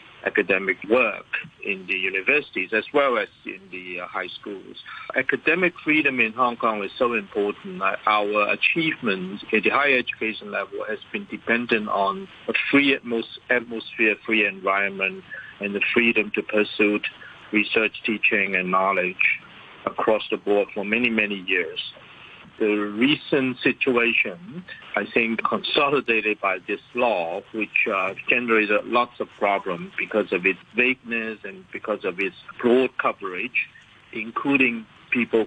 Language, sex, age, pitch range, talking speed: English, male, 50-69, 105-125 Hz, 135 wpm